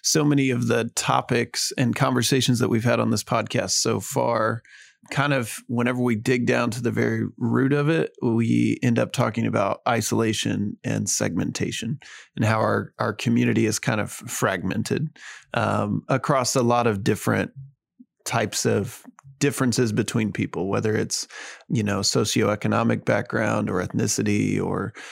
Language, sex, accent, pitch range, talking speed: English, male, American, 110-130 Hz, 155 wpm